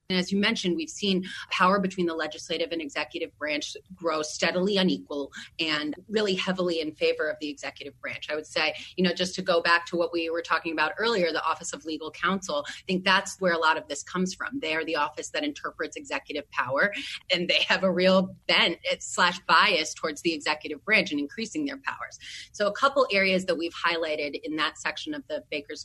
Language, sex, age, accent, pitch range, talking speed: English, female, 30-49, American, 160-195 Hz, 215 wpm